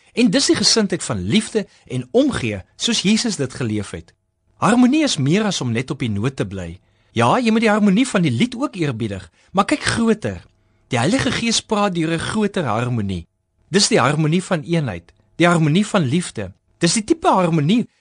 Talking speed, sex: 195 wpm, male